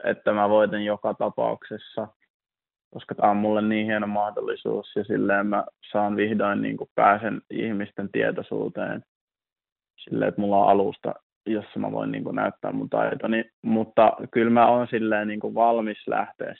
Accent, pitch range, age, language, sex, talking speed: native, 100-115 Hz, 20-39, Finnish, male, 155 wpm